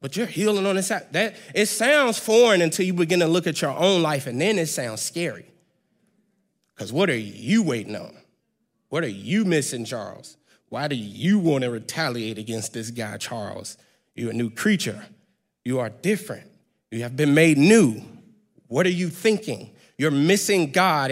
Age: 30-49